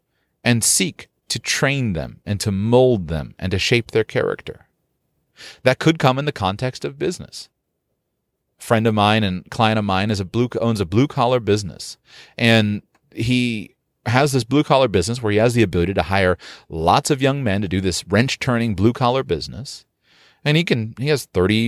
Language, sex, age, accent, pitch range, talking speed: English, male, 30-49, American, 100-130 Hz, 175 wpm